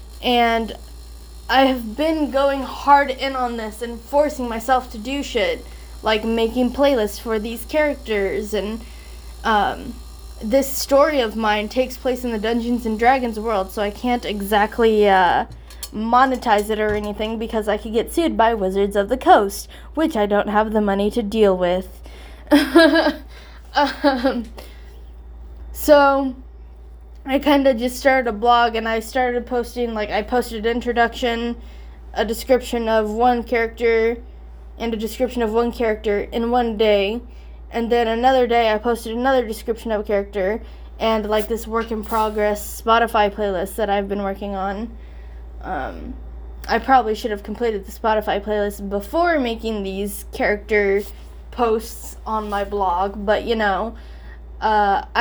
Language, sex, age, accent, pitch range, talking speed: English, female, 10-29, American, 210-250 Hz, 150 wpm